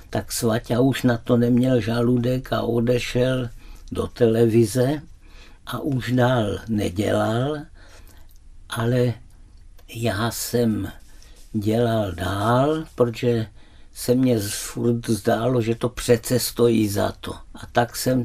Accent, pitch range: native, 100-120 Hz